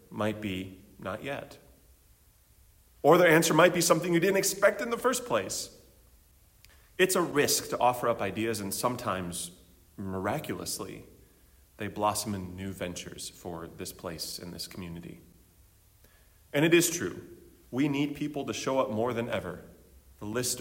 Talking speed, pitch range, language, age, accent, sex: 155 wpm, 90-120 Hz, English, 30-49, American, male